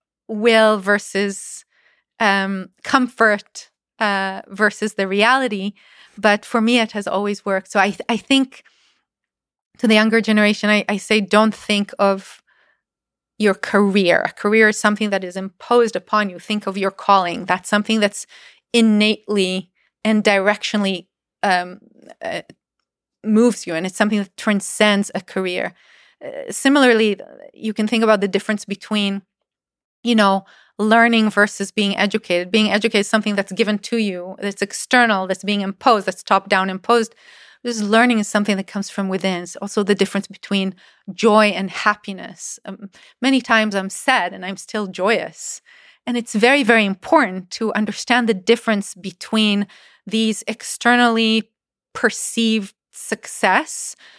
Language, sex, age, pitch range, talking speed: English, female, 30-49, 195-225 Hz, 145 wpm